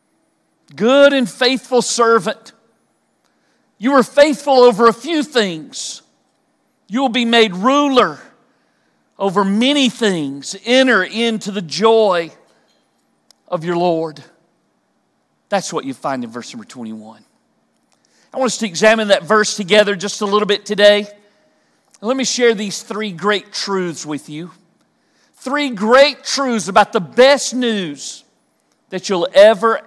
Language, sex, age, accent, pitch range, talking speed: English, male, 50-69, American, 205-265 Hz, 135 wpm